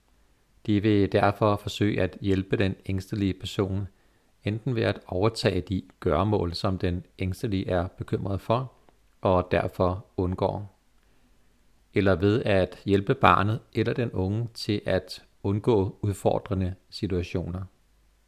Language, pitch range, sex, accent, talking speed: Danish, 95-110 Hz, male, native, 120 wpm